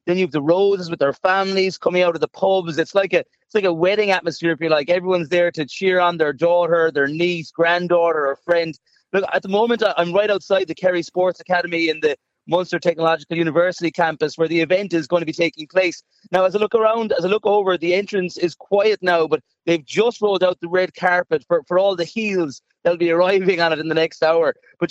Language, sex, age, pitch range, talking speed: English, male, 30-49, 165-195 Hz, 240 wpm